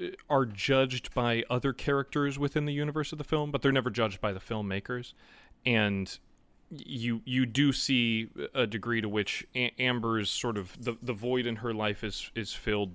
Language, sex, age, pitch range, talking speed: English, male, 30-49, 100-125 Hz, 180 wpm